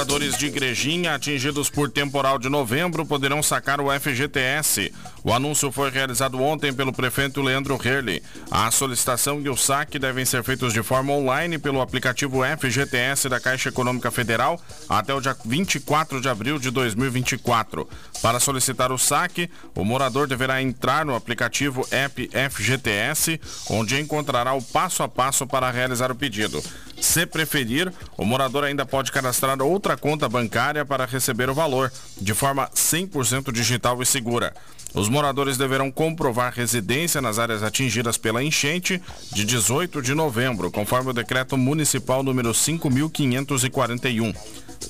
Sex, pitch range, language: male, 125-145 Hz, Portuguese